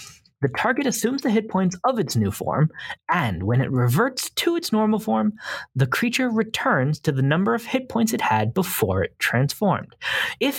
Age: 30-49